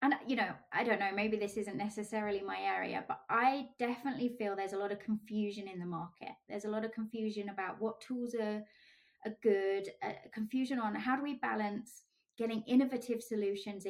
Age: 20-39